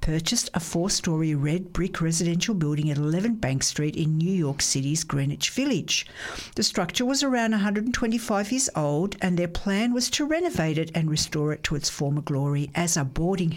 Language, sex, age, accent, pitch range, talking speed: English, female, 60-79, Australian, 150-210 Hz, 180 wpm